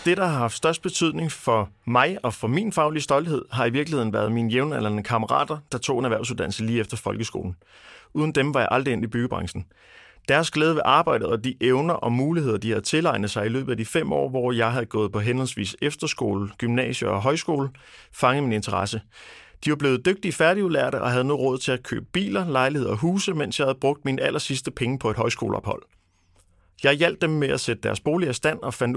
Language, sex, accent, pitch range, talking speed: Danish, male, native, 115-145 Hz, 220 wpm